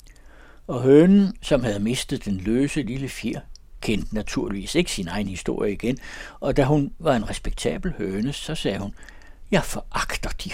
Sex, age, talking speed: male, 60-79, 165 wpm